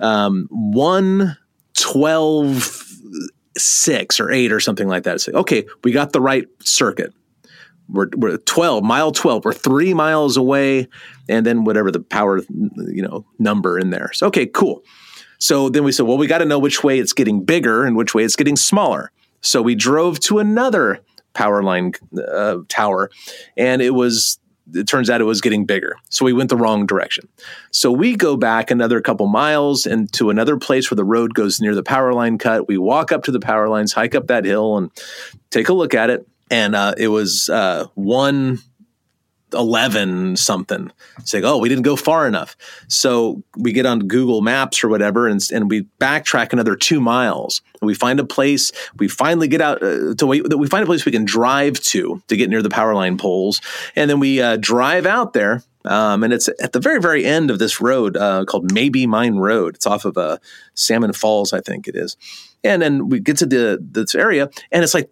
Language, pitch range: English, 105-145 Hz